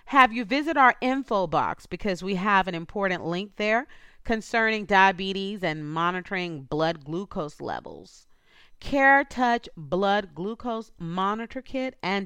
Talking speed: 125 wpm